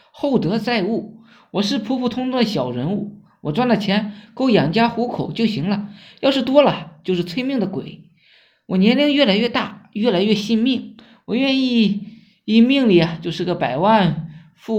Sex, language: male, Chinese